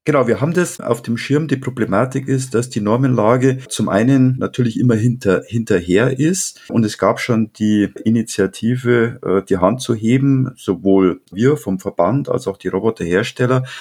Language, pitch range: German, 95-120 Hz